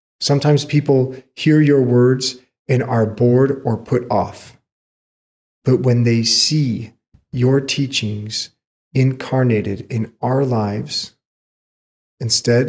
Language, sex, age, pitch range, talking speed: English, male, 40-59, 110-130 Hz, 105 wpm